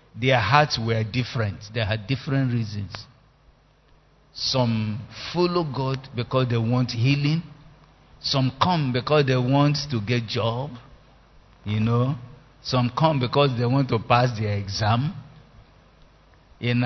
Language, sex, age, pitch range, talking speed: English, male, 50-69, 115-145 Hz, 125 wpm